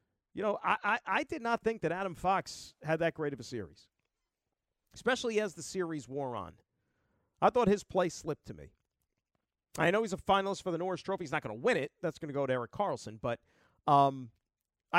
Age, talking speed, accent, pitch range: 40-59, 220 wpm, American, 140-200 Hz